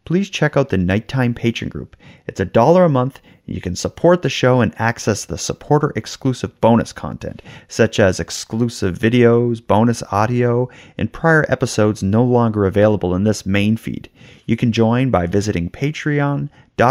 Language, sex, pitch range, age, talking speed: English, male, 105-145 Hz, 30-49, 165 wpm